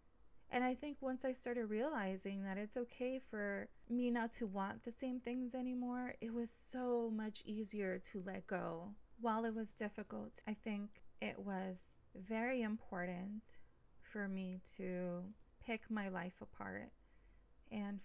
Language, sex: English, female